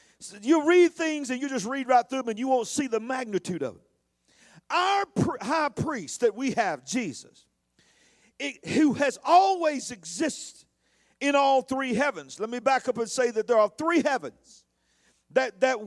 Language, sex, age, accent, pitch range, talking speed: English, male, 50-69, American, 215-265 Hz, 175 wpm